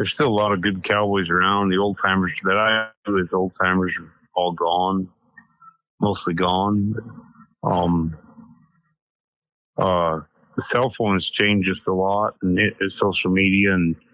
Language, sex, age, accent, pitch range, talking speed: English, male, 30-49, American, 85-100 Hz, 160 wpm